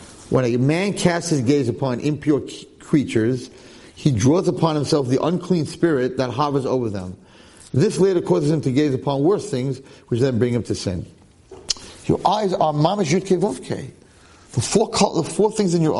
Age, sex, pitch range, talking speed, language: 40-59, male, 125-180 Hz, 175 wpm, English